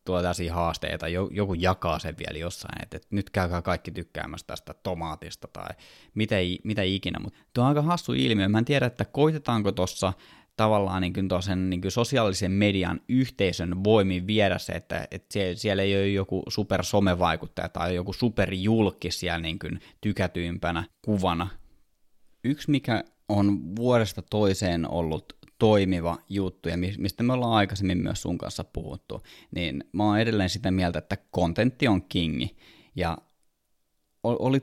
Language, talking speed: Finnish, 145 wpm